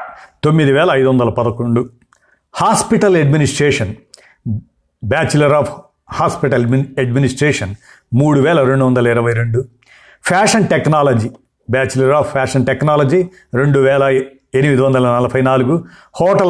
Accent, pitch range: native, 120-145 Hz